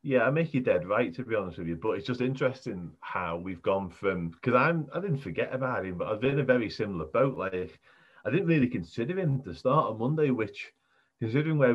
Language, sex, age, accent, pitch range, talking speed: English, male, 30-49, British, 95-130 Hz, 240 wpm